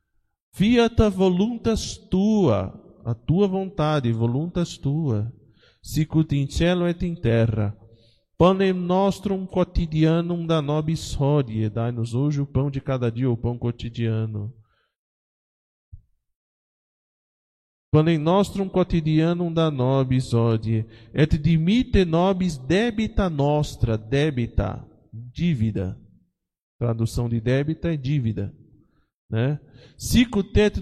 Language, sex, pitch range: Portuguese, male, 115-165 Hz